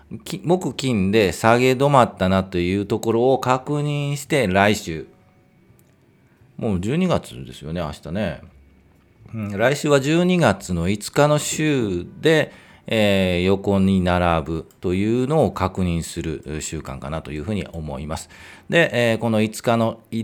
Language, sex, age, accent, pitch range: Japanese, male, 40-59, native, 85-120 Hz